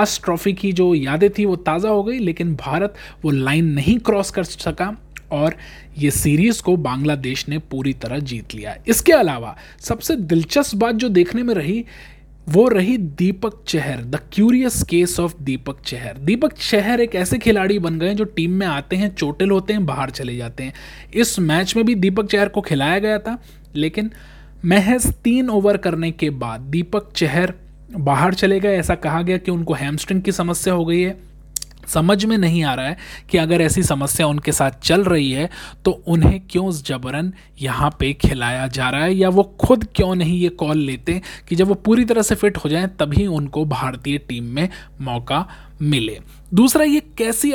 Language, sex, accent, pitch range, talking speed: Hindi, male, native, 155-210 Hz, 190 wpm